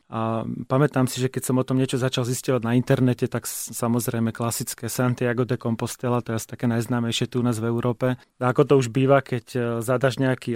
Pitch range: 120-130 Hz